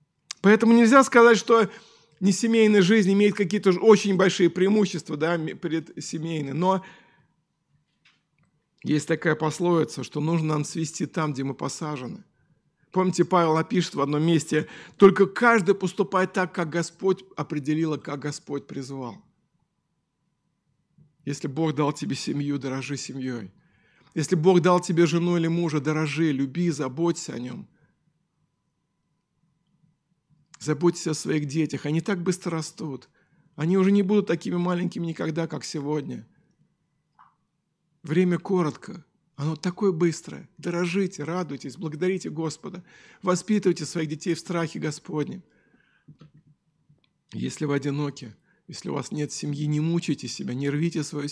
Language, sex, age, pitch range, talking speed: Russian, male, 50-69, 150-180 Hz, 125 wpm